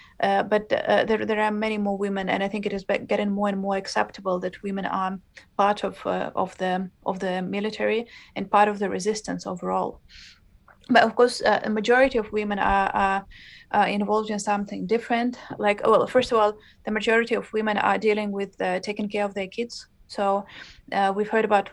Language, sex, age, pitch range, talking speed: Finnish, female, 20-39, 195-215 Hz, 205 wpm